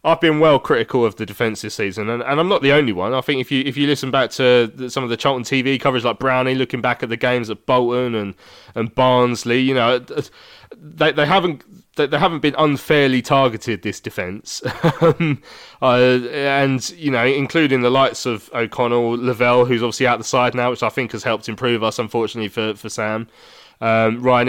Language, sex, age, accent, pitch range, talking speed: English, male, 20-39, British, 115-135 Hz, 215 wpm